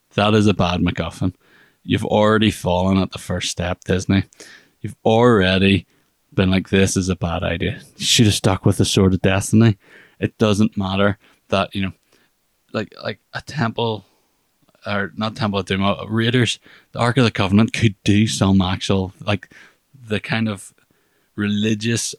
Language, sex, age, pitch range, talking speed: English, male, 20-39, 95-110 Hz, 165 wpm